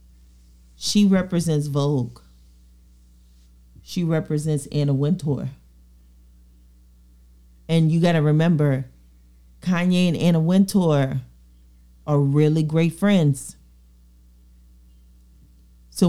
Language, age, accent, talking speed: English, 40-59, American, 80 wpm